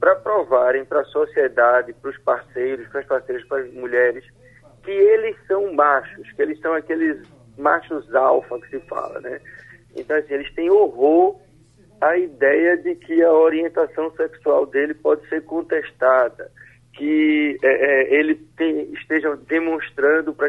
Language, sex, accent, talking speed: Portuguese, male, Brazilian, 140 wpm